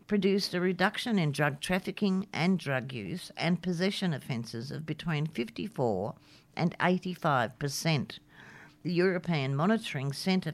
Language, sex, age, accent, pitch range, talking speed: English, female, 60-79, Australian, 140-180 Hz, 120 wpm